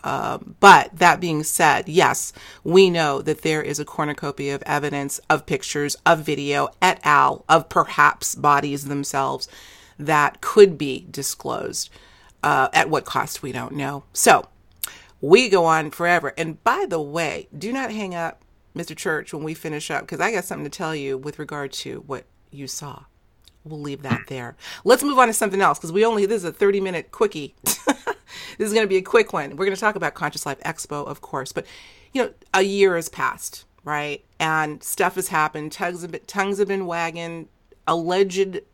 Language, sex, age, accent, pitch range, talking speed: English, female, 40-59, American, 145-195 Hz, 190 wpm